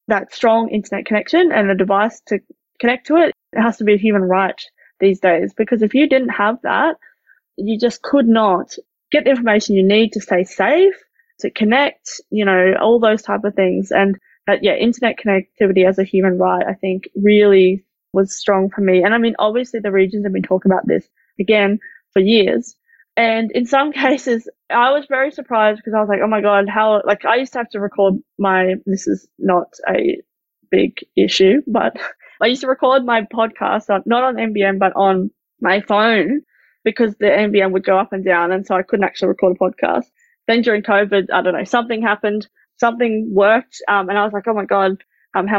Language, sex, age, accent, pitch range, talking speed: English, female, 20-39, Australian, 195-230 Hz, 205 wpm